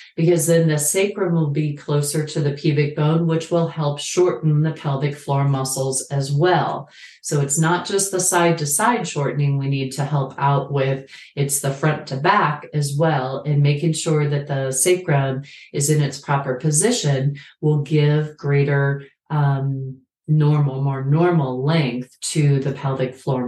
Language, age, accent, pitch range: English, 40-59, American, 140-170 Hz